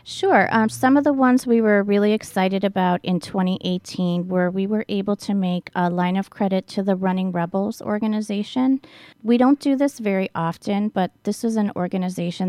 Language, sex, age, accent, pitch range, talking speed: English, female, 30-49, American, 175-200 Hz, 185 wpm